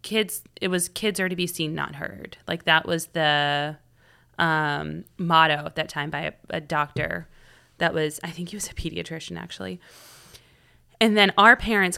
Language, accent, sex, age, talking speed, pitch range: English, American, female, 30-49, 180 wpm, 150-180 Hz